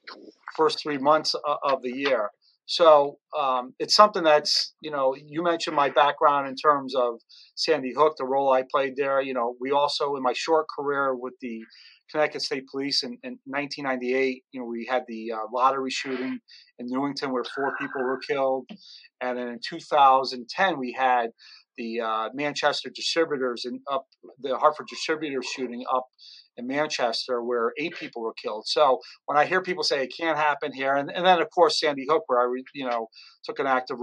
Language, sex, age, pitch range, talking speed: English, male, 40-59, 125-150 Hz, 190 wpm